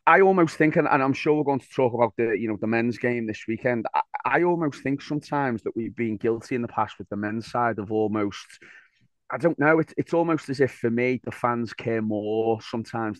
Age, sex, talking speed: 30-49, male, 235 wpm